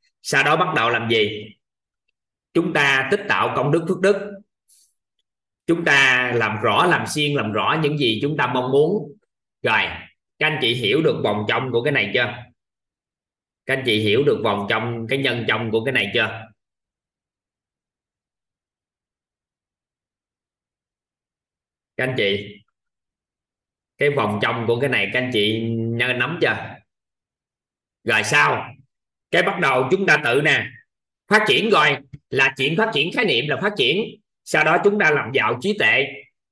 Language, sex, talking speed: Vietnamese, male, 160 wpm